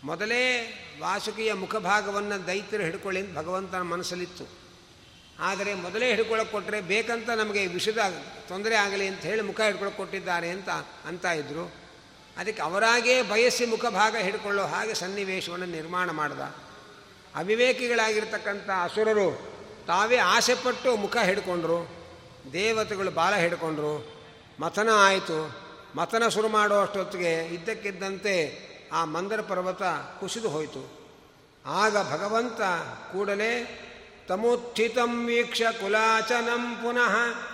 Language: Kannada